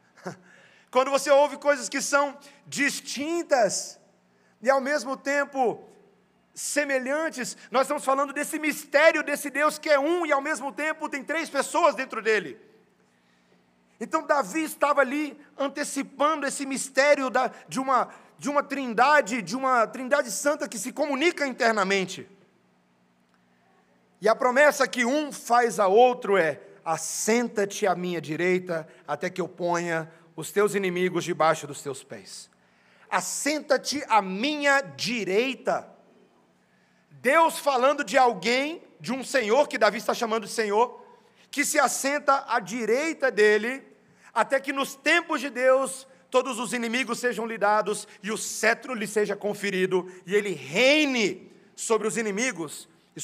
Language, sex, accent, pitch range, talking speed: Portuguese, male, Brazilian, 205-285 Hz, 135 wpm